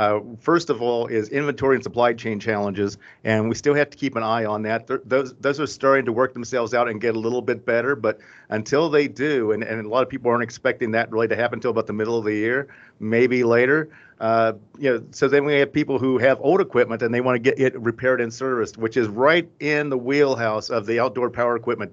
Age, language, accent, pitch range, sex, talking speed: 50-69, English, American, 110-130 Hz, male, 250 wpm